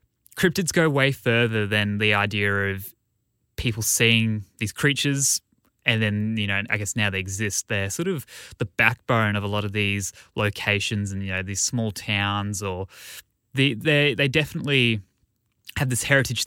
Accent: Australian